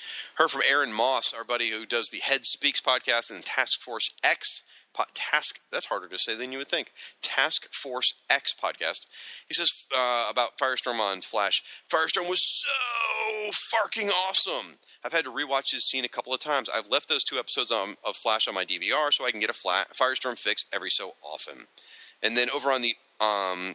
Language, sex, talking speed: English, male, 200 wpm